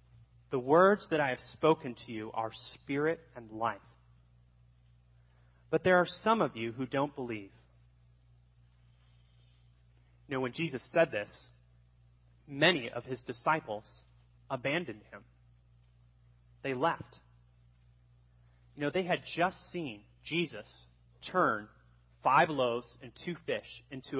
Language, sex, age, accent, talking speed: English, male, 30-49, American, 120 wpm